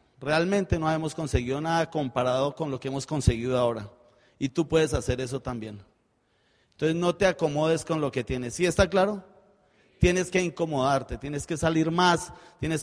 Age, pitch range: 30-49, 150-180 Hz